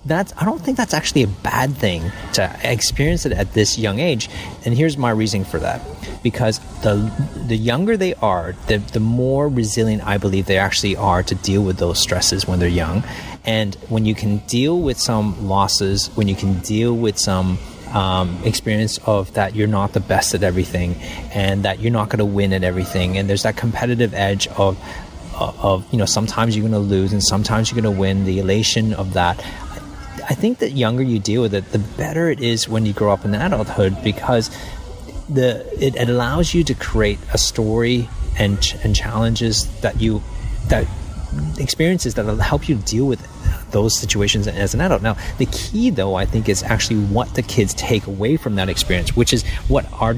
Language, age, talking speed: English, 30-49, 200 wpm